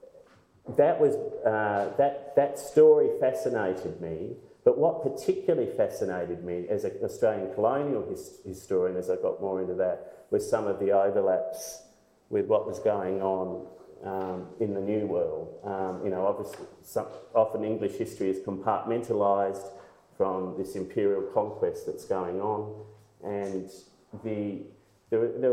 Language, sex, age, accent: English, male, 30-49, Australian